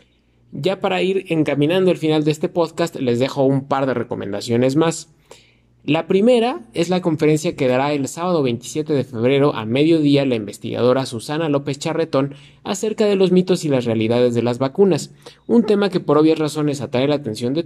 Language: Spanish